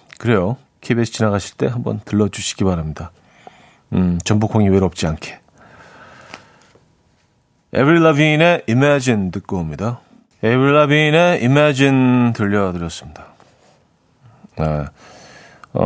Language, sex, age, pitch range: Korean, male, 40-59, 95-145 Hz